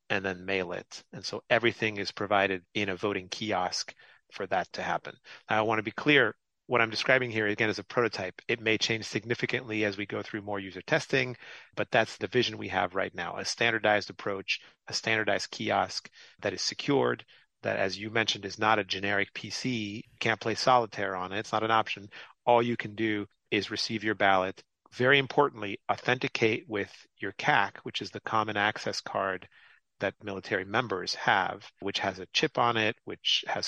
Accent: American